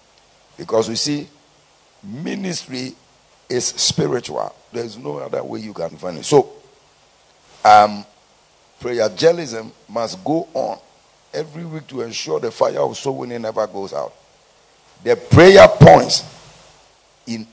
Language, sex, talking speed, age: English, male, 130 wpm, 50-69